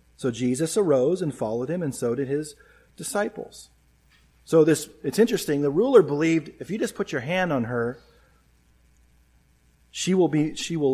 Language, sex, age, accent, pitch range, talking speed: English, male, 40-59, American, 120-165 Hz, 170 wpm